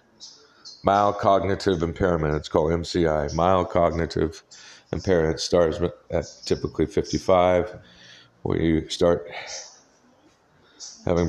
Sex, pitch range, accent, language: male, 80-95 Hz, American, English